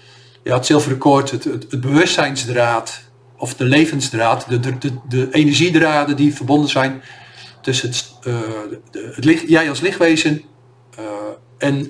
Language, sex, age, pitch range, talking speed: Dutch, male, 50-69, 125-145 Hz, 150 wpm